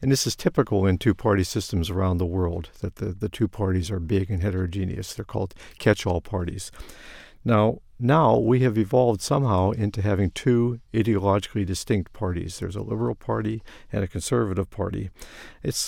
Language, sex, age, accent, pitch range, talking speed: English, male, 50-69, American, 95-115 Hz, 165 wpm